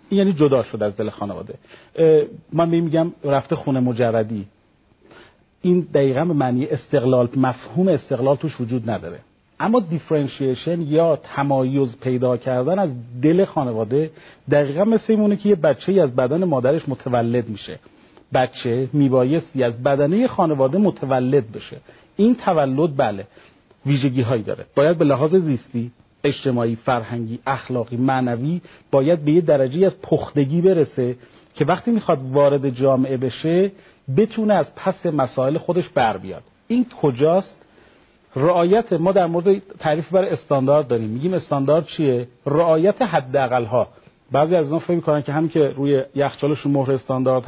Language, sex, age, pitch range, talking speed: Persian, male, 40-59, 130-170 Hz, 140 wpm